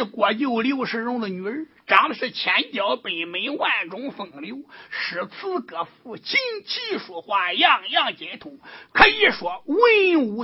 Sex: male